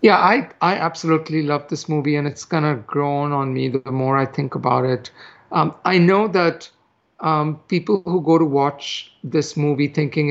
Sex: male